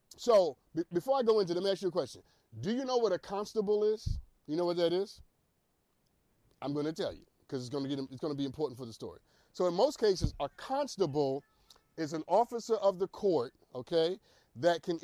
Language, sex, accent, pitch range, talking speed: English, male, American, 145-200 Hz, 210 wpm